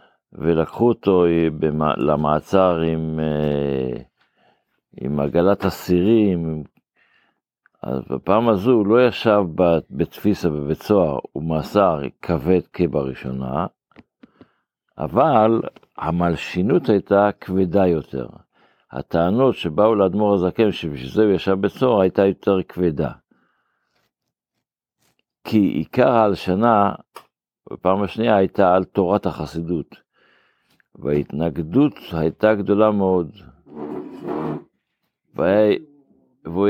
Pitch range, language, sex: 80-100 Hz, Hebrew, male